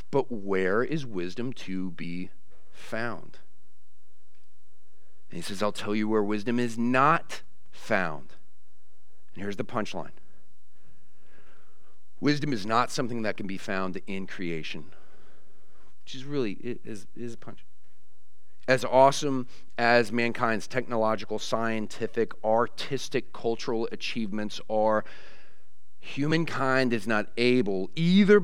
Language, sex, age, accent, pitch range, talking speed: English, male, 40-59, American, 100-135 Hz, 115 wpm